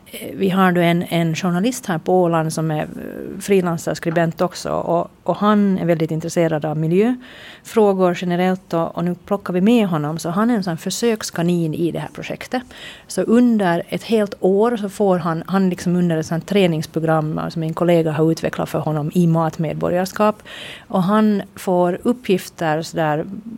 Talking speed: 175 wpm